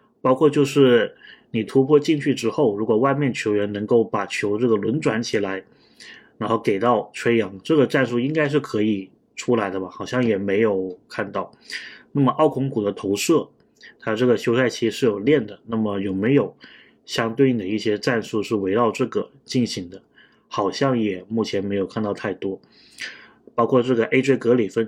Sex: male